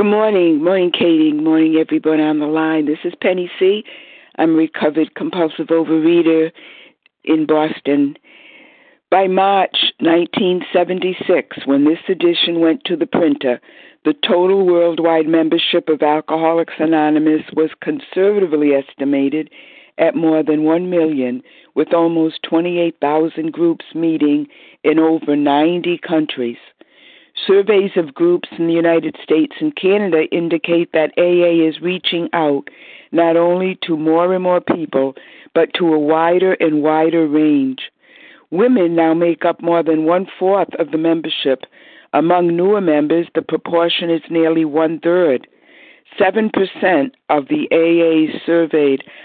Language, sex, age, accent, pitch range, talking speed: English, female, 60-79, American, 155-180 Hz, 135 wpm